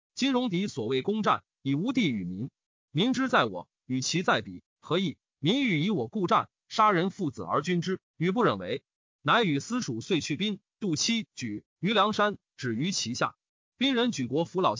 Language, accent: Chinese, native